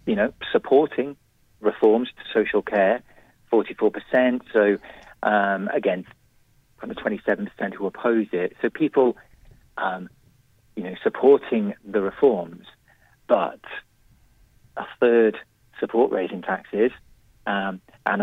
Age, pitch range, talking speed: 40-59, 100-125 Hz, 105 wpm